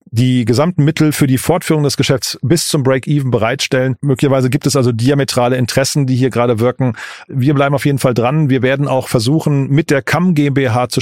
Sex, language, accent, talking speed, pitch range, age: male, German, German, 200 wpm, 125-140 Hz, 40-59